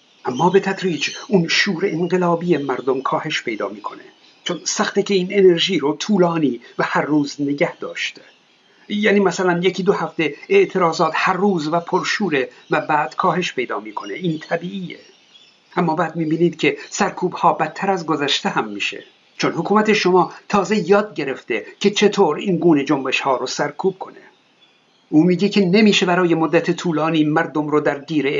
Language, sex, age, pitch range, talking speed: Persian, male, 50-69, 155-195 Hz, 160 wpm